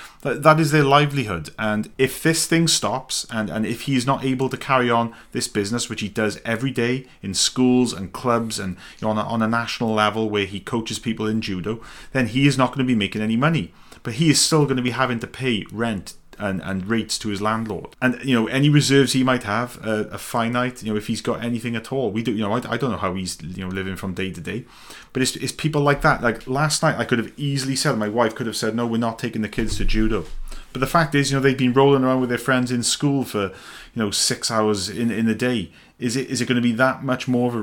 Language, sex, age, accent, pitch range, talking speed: English, male, 30-49, British, 110-130 Hz, 270 wpm